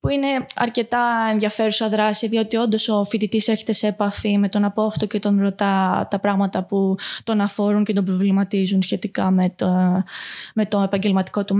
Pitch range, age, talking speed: 205-250 Hz, 20-39, 170 wpm